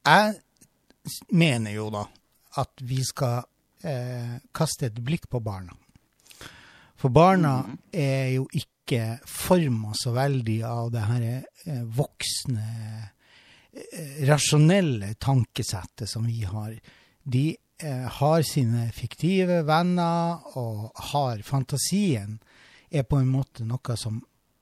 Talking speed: 120 wpm